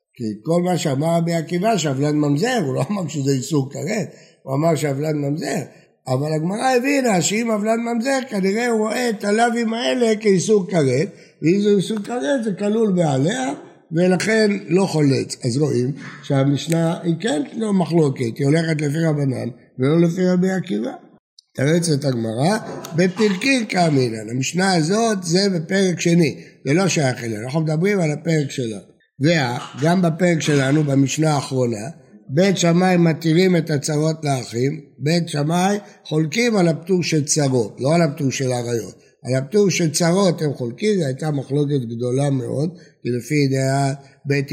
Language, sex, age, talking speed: Hebrew, male, 60-79, 150 wpm